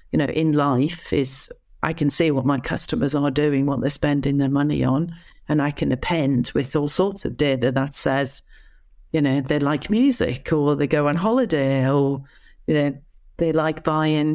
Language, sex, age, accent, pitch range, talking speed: English, female, 50-69, British, 140-160 Hz, 190 wpm